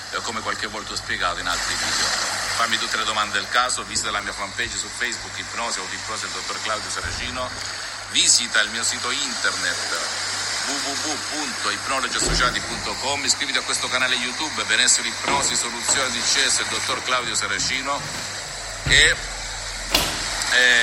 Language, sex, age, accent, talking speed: Italian, male, 50-69, native, 145 wpm